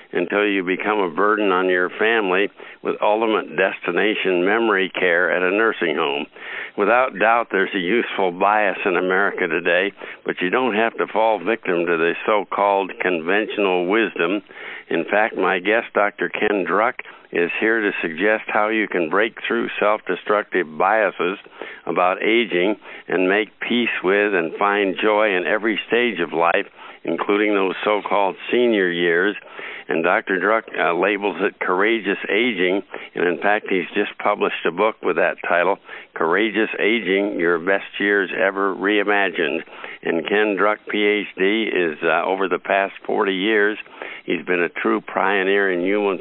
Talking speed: 155 wpm